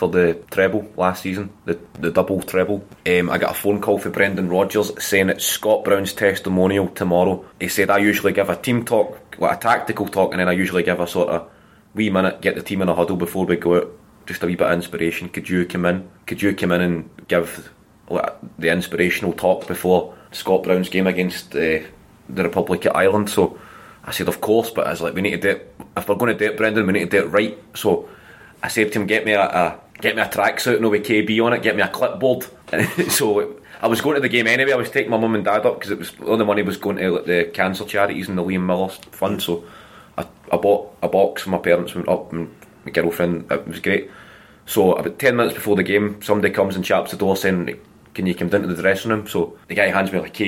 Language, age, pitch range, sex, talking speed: English, 20-39, 90-105 Hz, male, 255 wpm